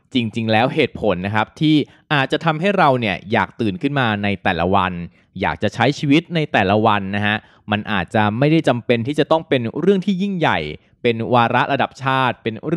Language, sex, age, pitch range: Thai, male, 20-39, 105-140 Hz